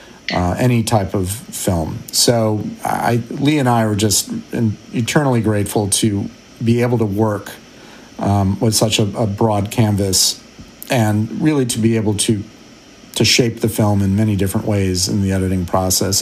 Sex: male